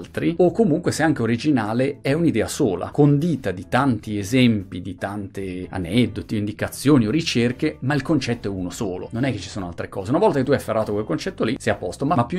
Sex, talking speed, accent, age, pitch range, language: male, 220 wpm, native, 30-49, 105-145 Hz, Italian